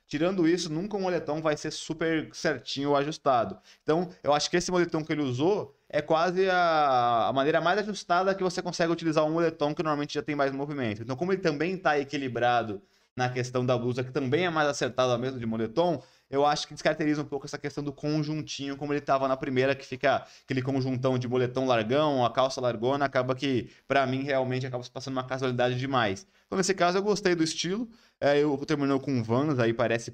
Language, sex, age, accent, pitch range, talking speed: Portuguese, male, 20-39, Brazilian, 125-155 Hz, 210 wpm